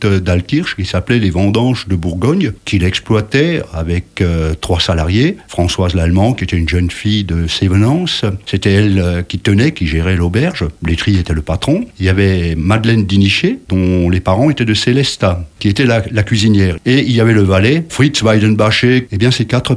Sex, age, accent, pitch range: male, 60-79, French, 95-120 Hz